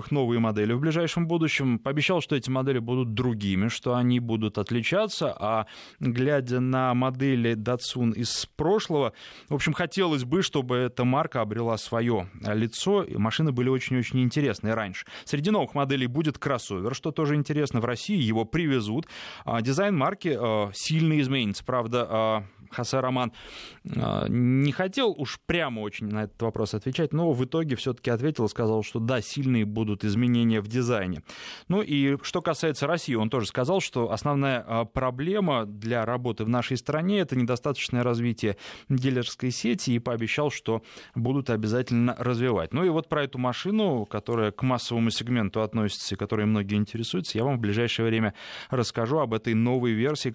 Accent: native